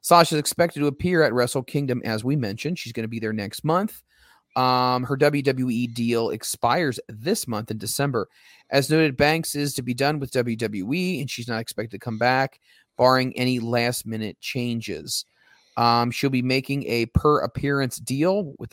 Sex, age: male, 30-49